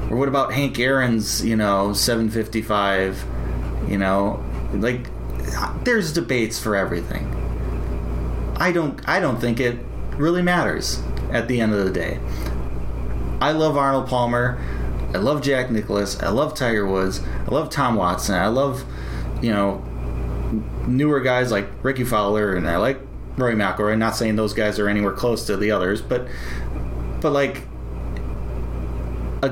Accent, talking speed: American, 150 wpm